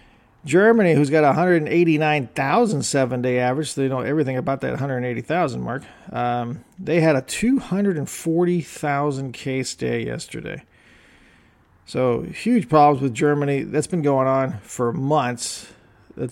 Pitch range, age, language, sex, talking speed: 125-155 Hz, 40-59, English, male, 130 wpm